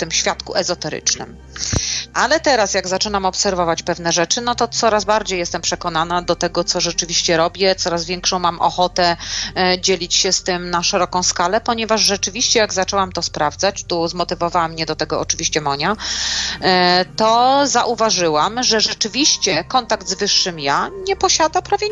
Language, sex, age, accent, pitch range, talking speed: Polish, female, 30-49, native, 170-205 Hz, 155 wpm